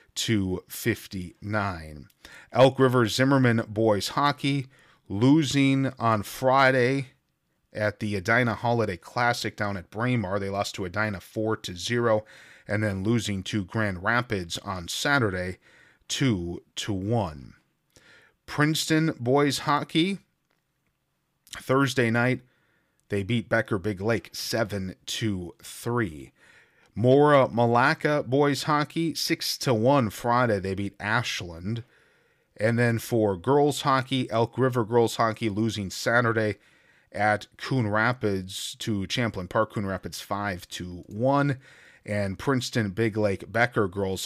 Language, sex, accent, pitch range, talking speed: English, male, American, 100-130 Hz, 115 wpm